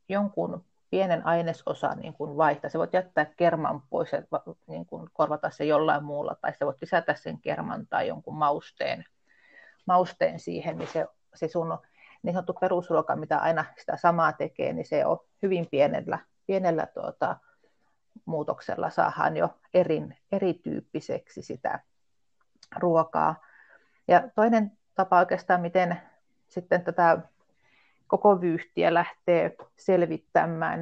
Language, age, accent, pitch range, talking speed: Finnish, 40-59, native, 165-200 Hz, 125 wpm